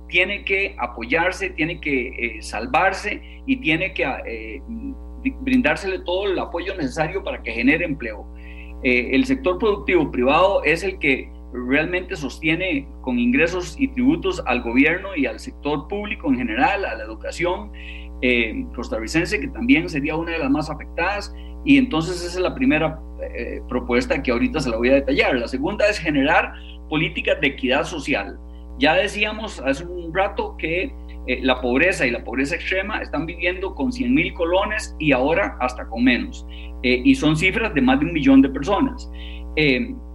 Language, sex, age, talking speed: Spanish, male, 40-59, 170 wpm